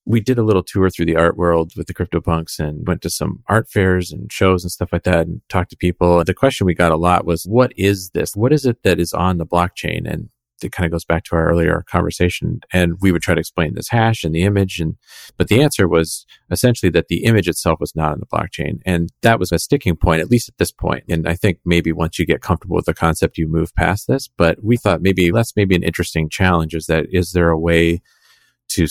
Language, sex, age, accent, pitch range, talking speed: English, male, 30-49, American, 80-95 Hz, 255 wpm